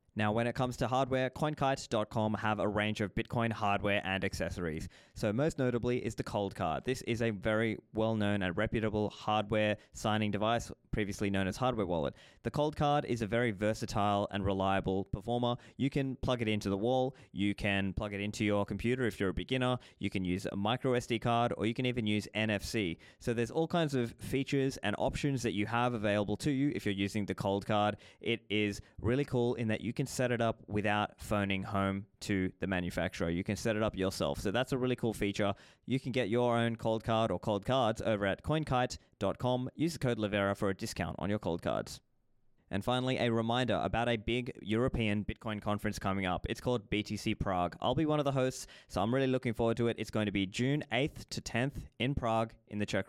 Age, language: 20-39, English